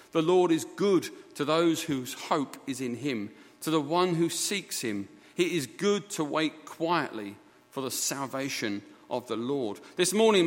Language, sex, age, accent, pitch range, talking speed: English, male, 40-59, British, 125-185 Hz, 180 wpm